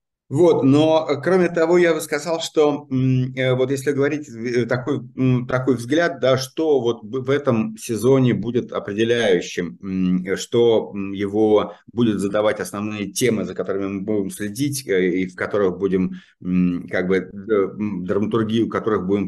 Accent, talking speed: native, 135 wpm